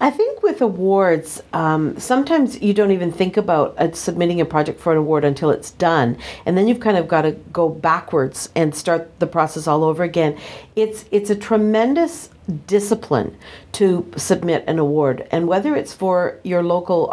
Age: 50-69